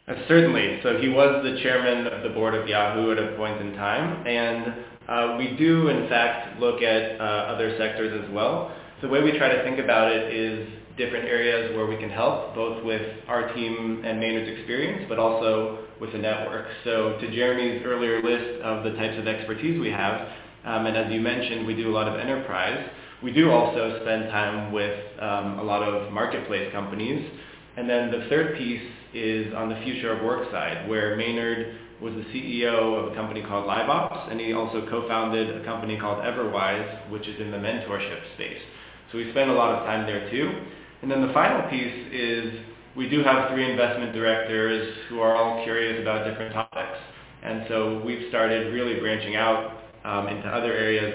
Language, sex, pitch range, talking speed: English, male, 110-120 Hz, 195 wpm